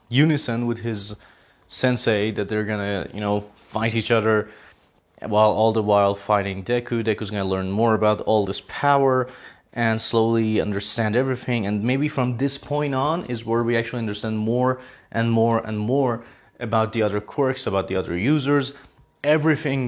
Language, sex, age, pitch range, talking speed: English, male, 30-49, 105-130 Hz, 165 wpm